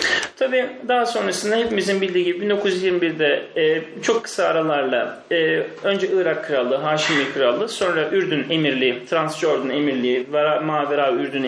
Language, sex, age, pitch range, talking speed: Turkish, male, 40-59, 165-215 Hz, 130 wpm